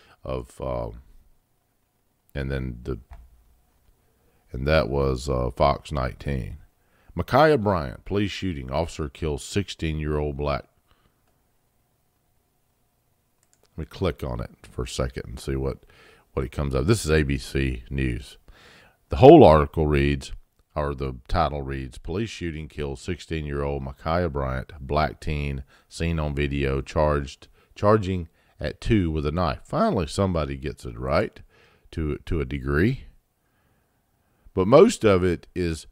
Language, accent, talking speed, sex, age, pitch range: English, American, 135 wpm, male, 50-69, 70-100 Hz